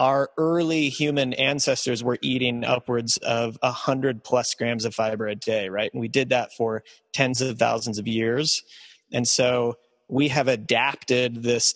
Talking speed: 165 wpm